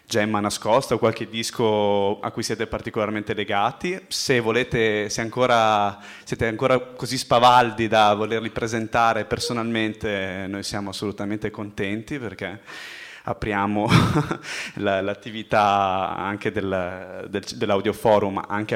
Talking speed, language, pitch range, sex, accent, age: 105 wpm, Italian, 105-115 Hz, male, native, 20-39